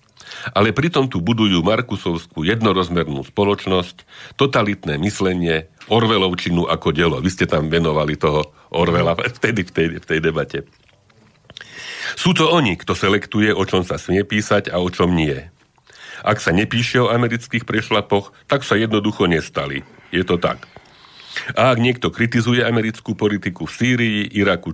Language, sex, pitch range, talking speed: Slovak, male, 85-110 Hz, 140 wpm